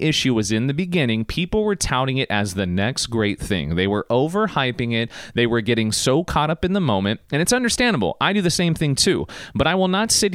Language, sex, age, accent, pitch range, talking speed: English, male, 30-49, American, 110-170 Hz, 240 wpm